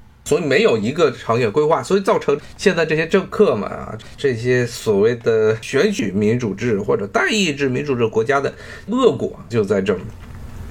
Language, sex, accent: Chinese, male, native